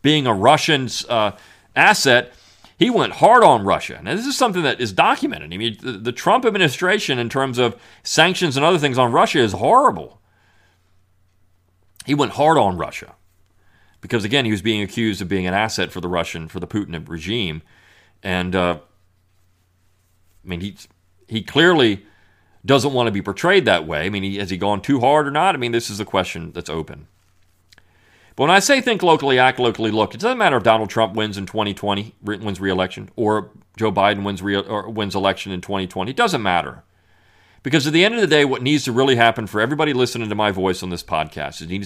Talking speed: 205 wpm